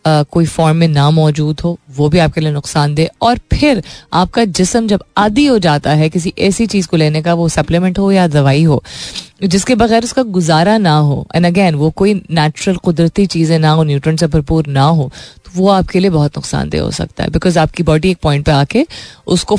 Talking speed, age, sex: 215 wpm, 30-49, female